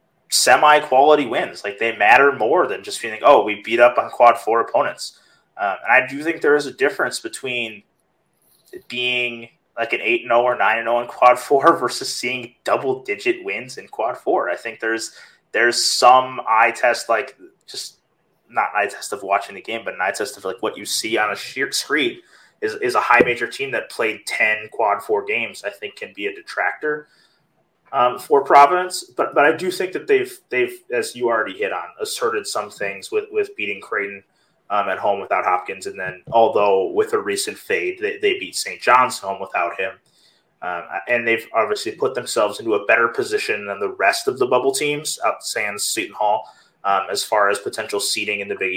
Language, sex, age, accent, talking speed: English, male, 30-49, American, 205 wpm